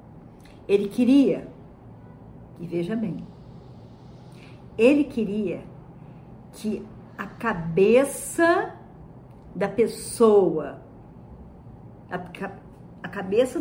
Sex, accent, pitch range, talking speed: female, Brazilian, 185-285 Hz, 65 wpm